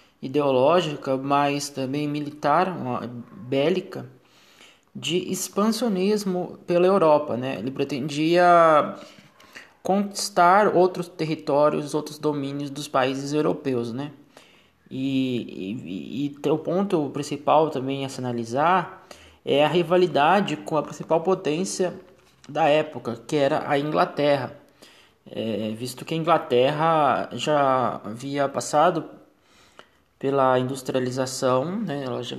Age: 20-39